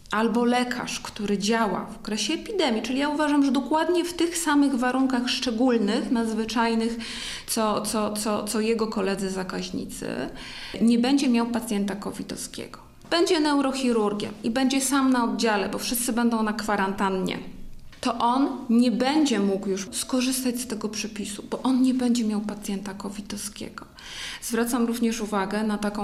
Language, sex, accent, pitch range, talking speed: Polish, female, native, 195-235 Hz, 145 wpm